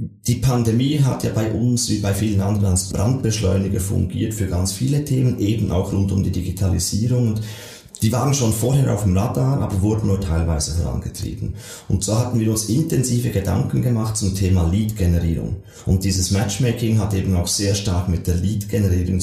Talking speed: 180 wpm